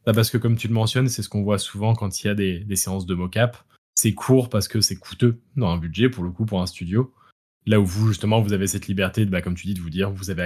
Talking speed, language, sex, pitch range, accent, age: 305 wpm, French, male, 95-115 Hz, French, 20-39